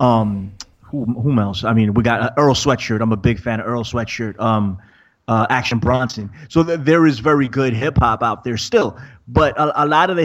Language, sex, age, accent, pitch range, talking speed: English, male, 30-49, American, 110-135 Hz, 215 wpm